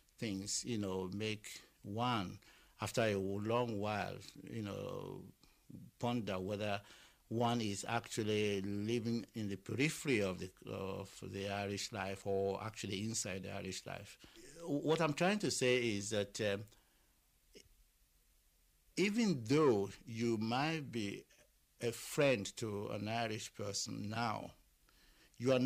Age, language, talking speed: 60-79, English, 125 wpm